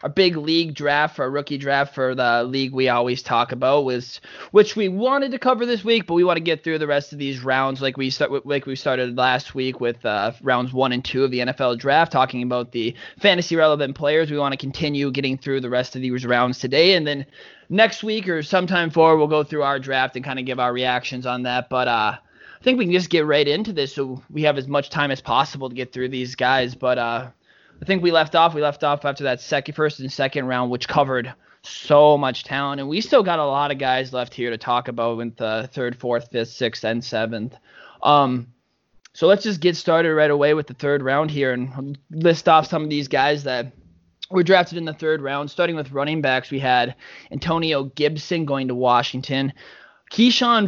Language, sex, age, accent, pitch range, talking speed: English, male, 20-39, American, 130-160 Hz, 230 wpm